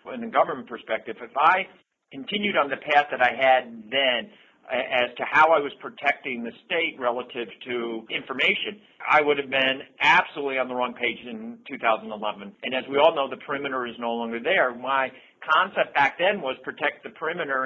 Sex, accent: male, American